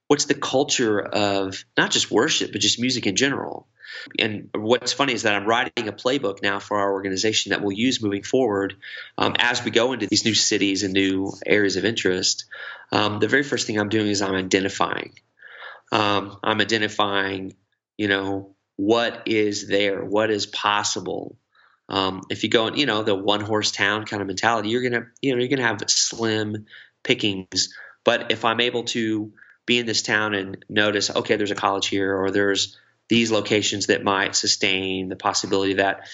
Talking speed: 195 wpm